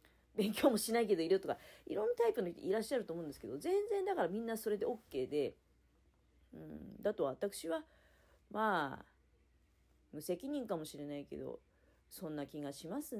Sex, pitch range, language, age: female, 135-220 Hz, Japanese, 40-59